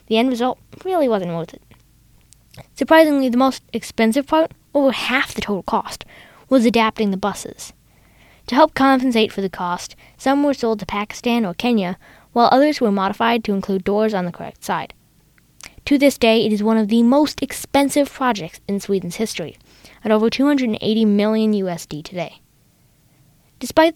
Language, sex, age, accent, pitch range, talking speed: English, female, 10-29, American, 190-255 Hz, 165 wpm